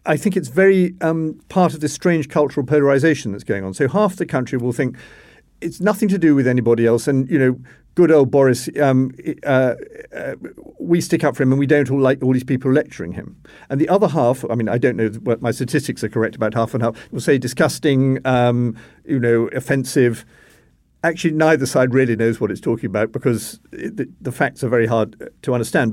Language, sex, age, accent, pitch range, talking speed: English, male, 50-69, British, 115-150 Hz, 215 wpm